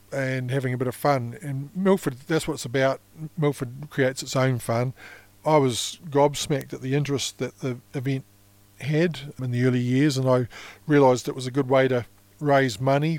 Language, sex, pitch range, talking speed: English, male, 125-145 Hz, 190 wpm